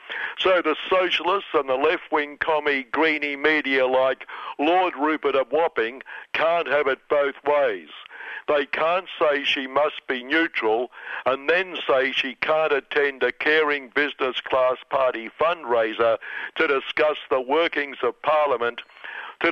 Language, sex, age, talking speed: English, male, 60-79, 140 wpm